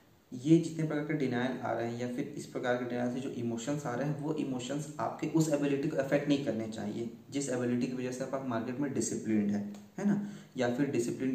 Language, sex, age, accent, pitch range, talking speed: Hindi, male, 20-39, native, 120-150 Hz, 240 wpm